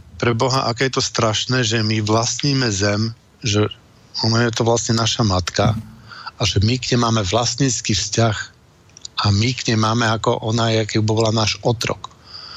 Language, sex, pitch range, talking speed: Slovak, male, 110-125 Hz, 170 wpm